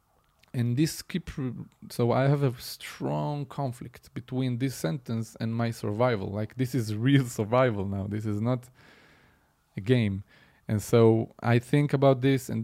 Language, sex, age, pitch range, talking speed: English, male, 20-39, 110-145 Hz, 155 wpm